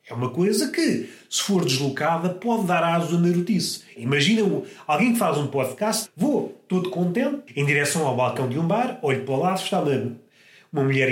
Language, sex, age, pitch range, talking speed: Portuguese, male, 30-49, 165-225 Hz, 190 wpm